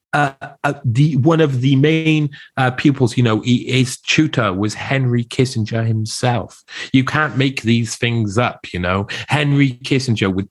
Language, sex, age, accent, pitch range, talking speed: English, male, 30-49, British, 95-135 Hz, 165 wpm